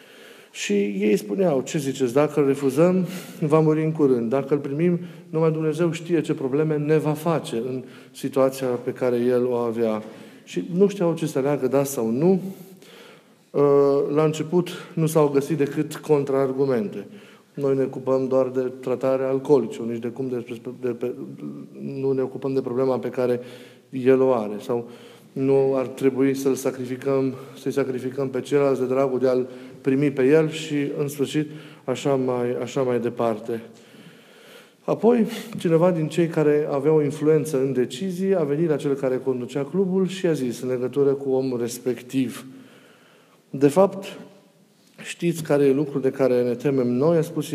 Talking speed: 165 wpm